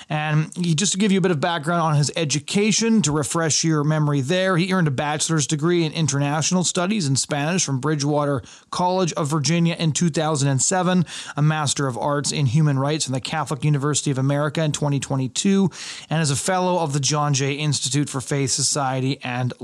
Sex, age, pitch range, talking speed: male, 30-49, 140-170 Hz, 190 wpm